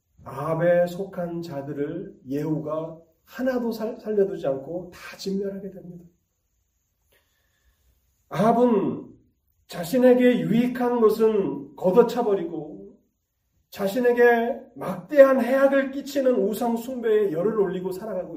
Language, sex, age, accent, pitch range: Korean, male, 40-59, native, 125-200 Hz